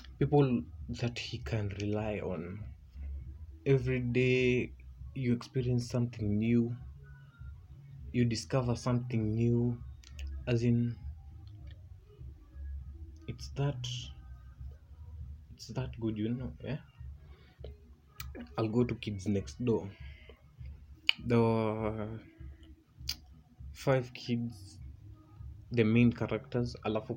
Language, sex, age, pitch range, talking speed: Swahili, male, 20-39, 75-120 Hz, 85 wpm